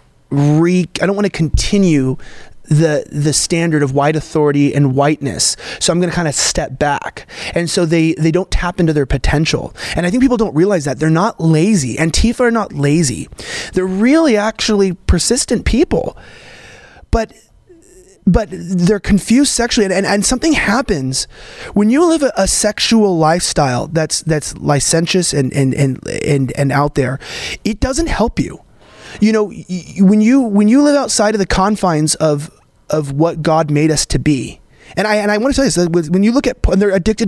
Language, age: English, 20-39